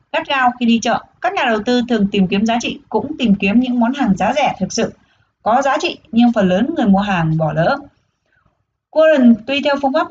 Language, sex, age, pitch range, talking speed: Vietnamese, female, 20-39, 200-260 Hz, 230 wpm